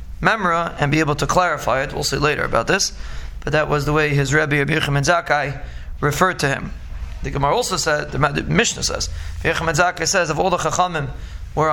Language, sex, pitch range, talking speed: English, male, 140-170 Hz, 210 wpm